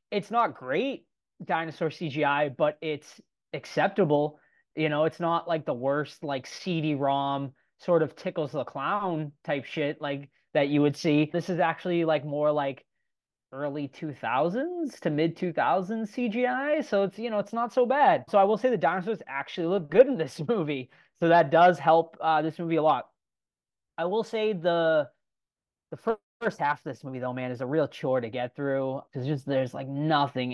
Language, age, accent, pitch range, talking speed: English, 20-39, American, 130-165 Hz, 185 wpm